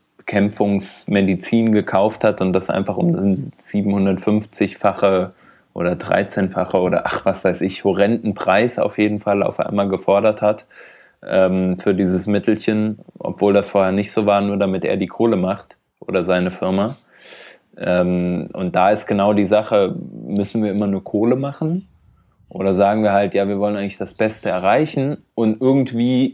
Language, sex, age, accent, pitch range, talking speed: German, male, 20-39, German, 95-110 Hz, 155 wpm